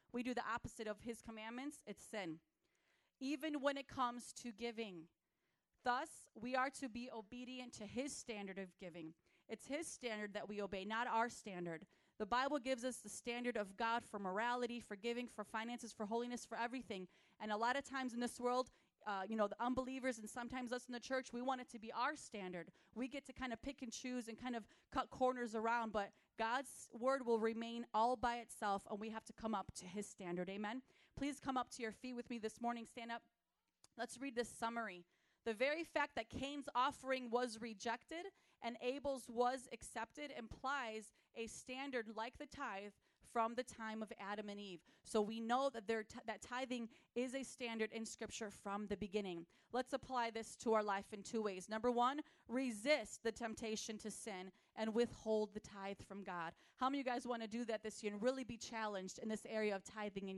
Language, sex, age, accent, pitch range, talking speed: English, female, 30-49, American, 215-255 Hz, 210 wpm